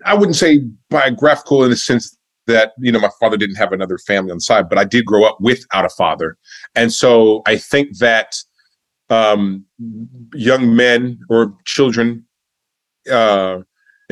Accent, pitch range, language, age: American, 105-125 Hz, English, 40-59